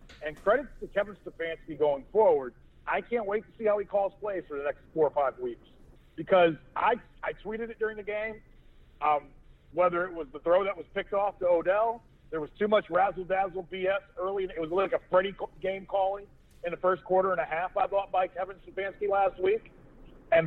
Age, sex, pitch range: 40-59, male, 165-205 Hz